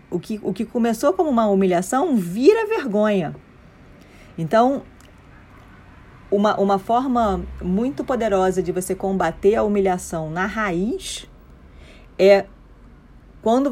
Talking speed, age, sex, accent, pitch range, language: 110 wpm, 40-59, female, Brazilian, 165-205 Hz, Portuguese